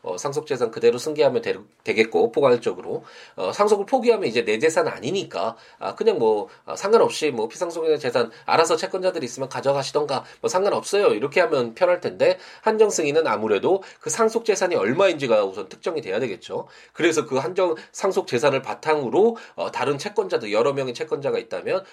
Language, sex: Korean, male